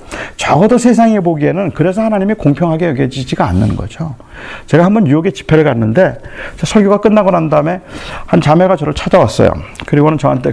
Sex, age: male, 40-59